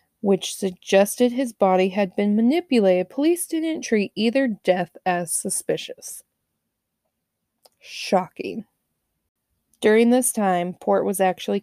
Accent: American